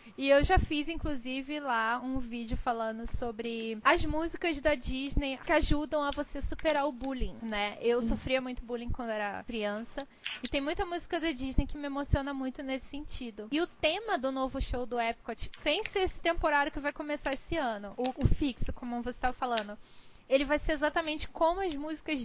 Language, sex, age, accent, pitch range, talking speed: Portuguese, female, 20-39, Brazilian, 240-300 Hz, 195 wpm